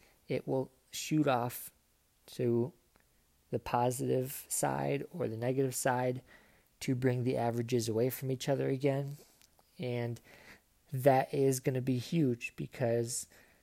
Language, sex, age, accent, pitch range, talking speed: English, male, 20-39, American, 120-135 Hz, 130 wpm